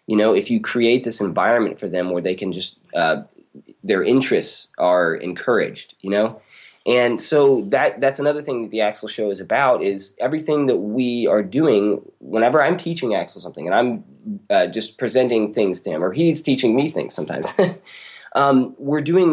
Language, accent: English, American